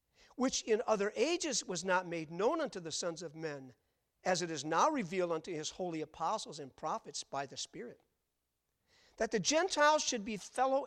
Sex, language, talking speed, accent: male, English, 180 wpm, American